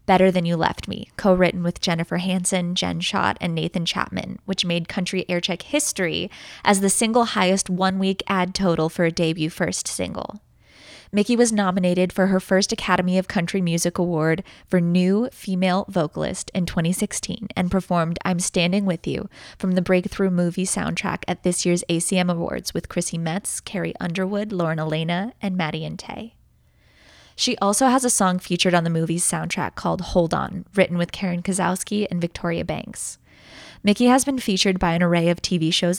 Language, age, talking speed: English, 20-39, 175 wpm